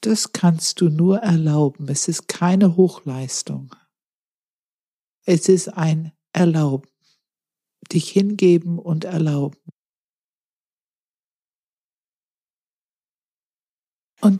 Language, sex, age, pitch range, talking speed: German, female, 60-79, 155-195 Hz, 75 wpm